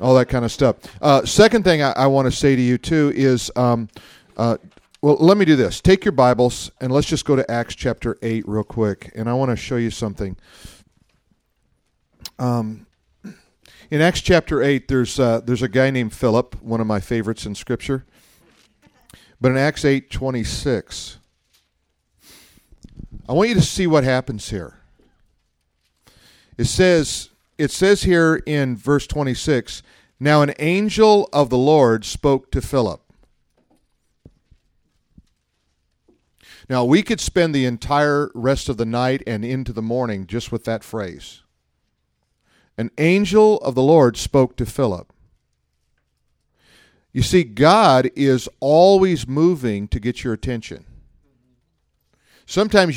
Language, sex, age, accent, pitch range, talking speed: English, male, 50-69, American, 105-145 Hz, 145 wpm